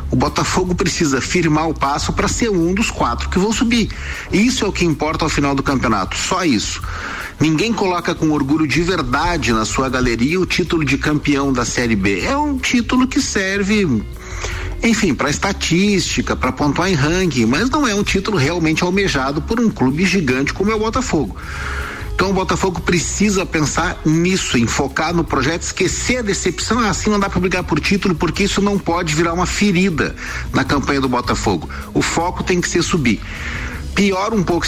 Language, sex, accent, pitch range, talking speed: Portuguese, male, Brazilian, 125-190 Hz, 185 wpm